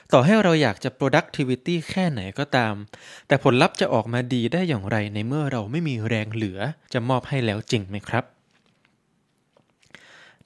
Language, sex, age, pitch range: Thai, male, 20-39, 115-155 Hz